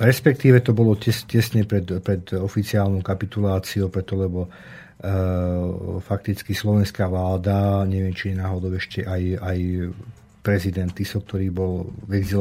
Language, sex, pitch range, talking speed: Slovak, male, 95-110 Hz, 120 wpm